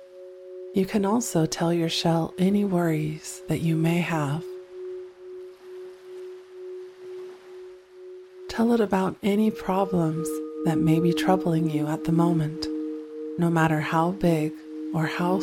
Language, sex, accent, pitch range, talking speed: English, female, American, 155-185 Hz, 120 wpm